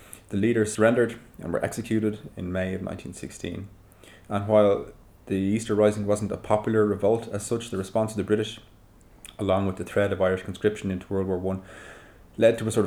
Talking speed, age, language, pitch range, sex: 190 wpm, 20-39, English, 95-110 Hz, male